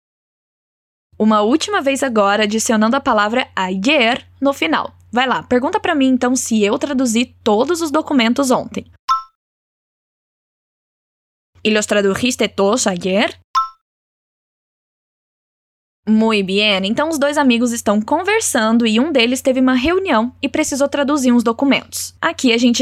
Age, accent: 10-29, Brazilian